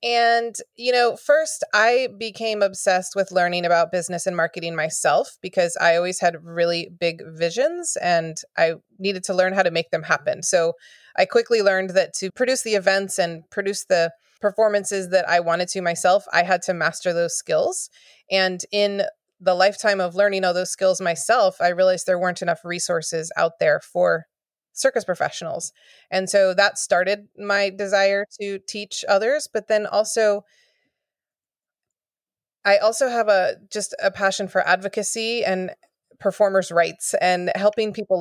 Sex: female